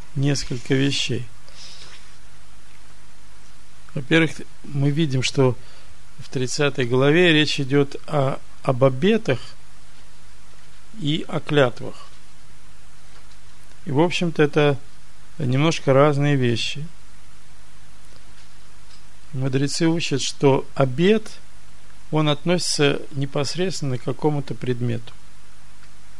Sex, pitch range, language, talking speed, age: male, 125-150 Hz, Russian, 75 wpm, 50-69